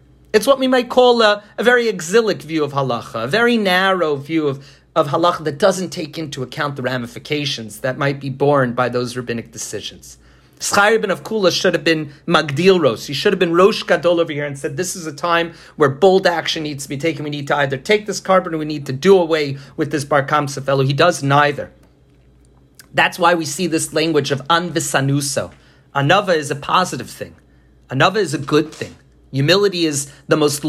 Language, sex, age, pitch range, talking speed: English, male, 40-59, 145-190 Hz, 205 wpm